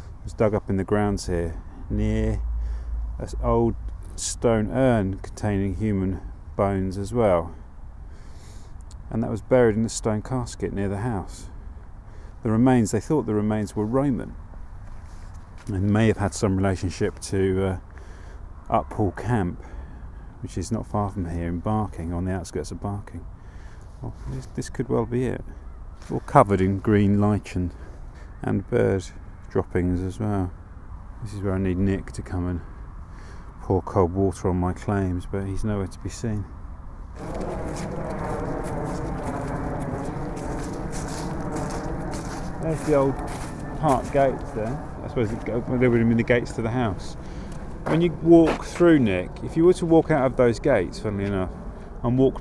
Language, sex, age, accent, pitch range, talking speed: English, male, 40-59, British, 90-120 Hz, 150 wpm